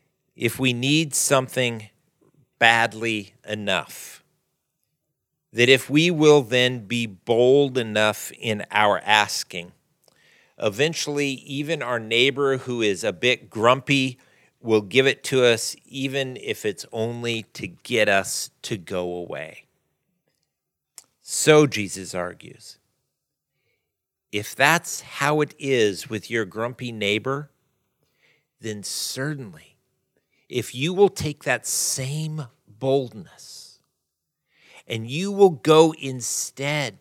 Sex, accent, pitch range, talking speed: male, American, 110-145 Hz, 110 wpm